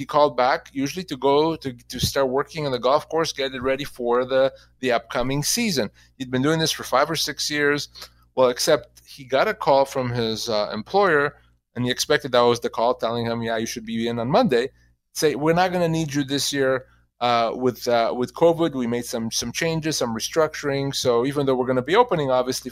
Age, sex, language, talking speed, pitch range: 30-49, male, English, 230 wpm, 120-150 Hz